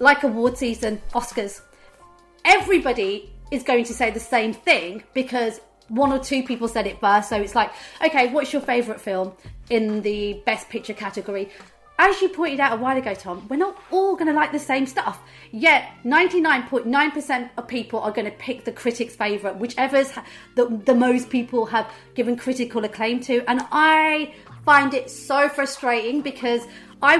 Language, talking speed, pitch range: English, 175 wpm, 215-275 Hz